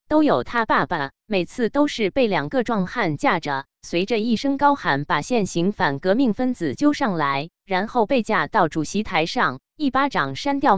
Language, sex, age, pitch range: Chinese, female, 20-39, 165-255 Hz